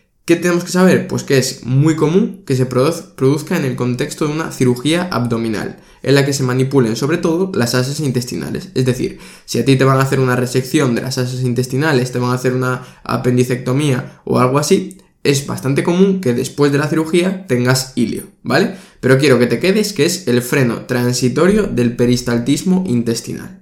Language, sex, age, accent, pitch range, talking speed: Spanish, male, 20-39, Spanish, 125-165 Hz, 200 wpm